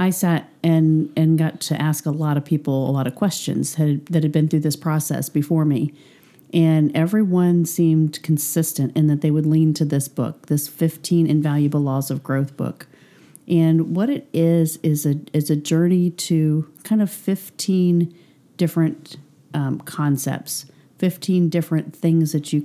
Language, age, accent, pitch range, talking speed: English, 40-59, American, 150-170 Hz, 170 wpm